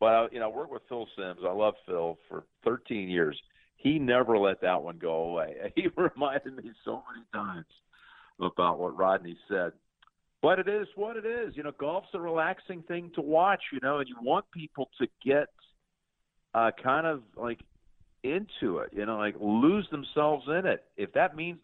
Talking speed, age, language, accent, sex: 190 wpm, 50-69, English, American, male